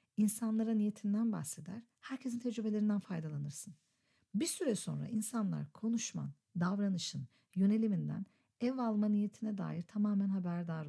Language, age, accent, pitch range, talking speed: Turkish, 50-69, native, 170-230 Hz, 105 wpm